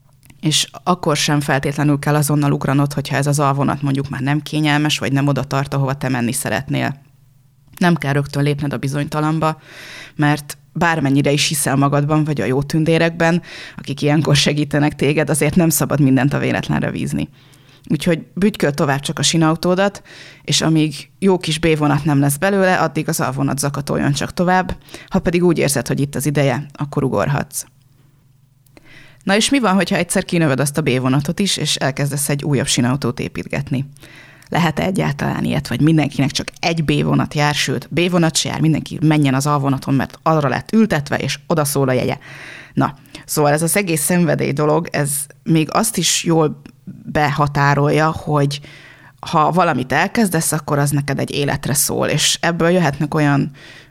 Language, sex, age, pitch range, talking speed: Hungarian, female, 20-39, 140-160 Hz, 165 wpm